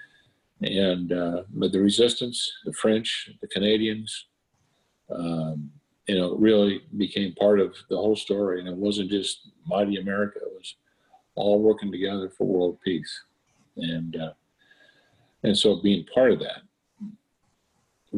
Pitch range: 90-110 Hz